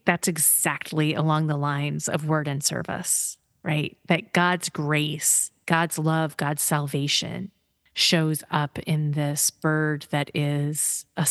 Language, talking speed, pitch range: English, 135 wpm, 150-180 Hz